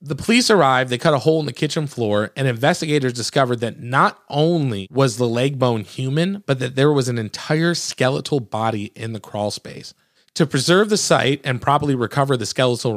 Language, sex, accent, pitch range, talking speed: English, male, American, 120-150 Hz, 200 wpm